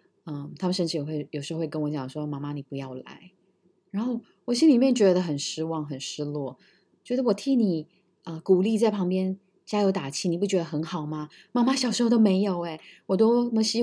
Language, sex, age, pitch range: Chinese, female, 20-39, 155-195 Hz